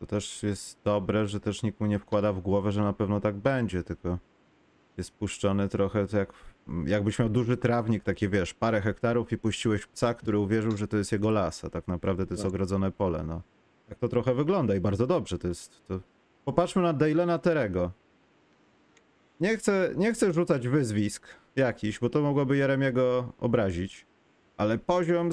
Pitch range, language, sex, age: 100-150 Hz, Polish, male, 30-49